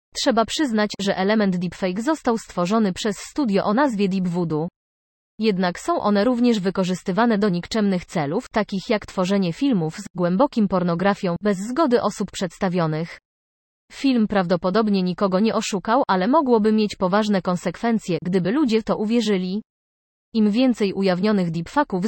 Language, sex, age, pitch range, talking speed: Polish, female, 20-39, 180-220 Hz, 135 wpm